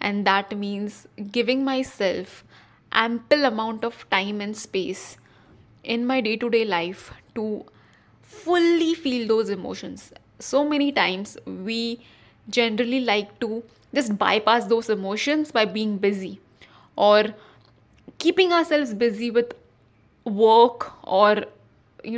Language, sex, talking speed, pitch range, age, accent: English, female, 115 wpm, 205-240 Hz, 10-29, Indian